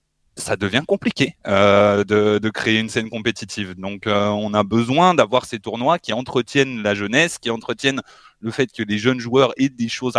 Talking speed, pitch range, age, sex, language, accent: 195 wpm, 110-155 Hz, 20-39, male, French, French